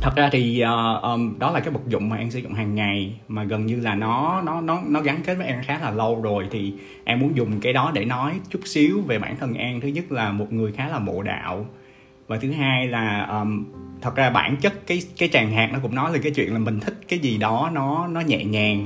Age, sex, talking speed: 20-39, male, 265 wpm